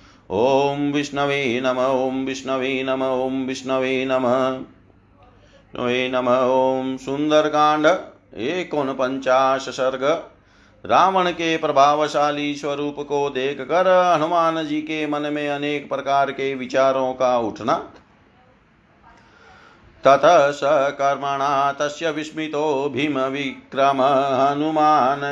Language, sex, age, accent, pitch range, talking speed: Hindi, male, 50-69, native, 130-145 Hz, 95 wpm